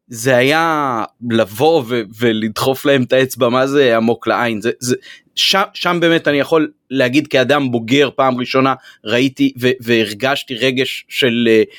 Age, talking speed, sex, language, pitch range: 30-49, 155 wpm, male, Hebrew, 125-175 Hz